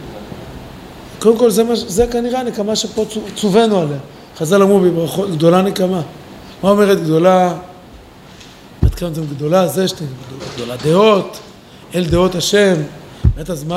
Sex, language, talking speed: male, Hebrew, 140 wpm